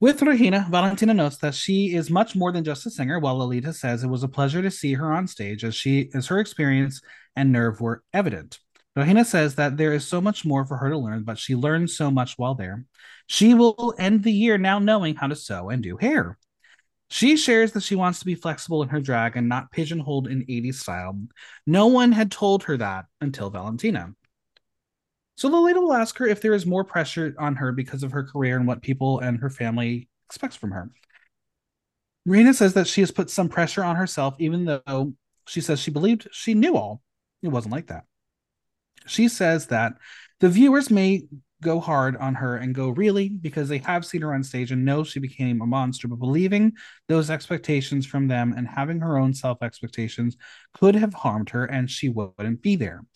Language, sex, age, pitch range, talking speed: English, male, 30-49, 130-190 Hz, 210 wpm